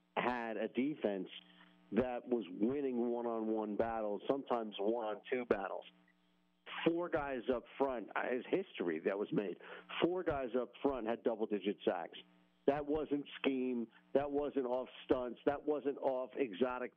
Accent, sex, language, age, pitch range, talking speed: American, male, English, 50-69, 110-140 Hz, 135 wpm